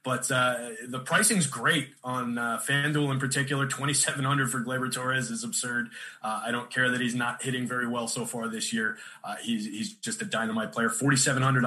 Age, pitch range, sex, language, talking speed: 20-39, 125-155 Hz, male, English, 195 wpm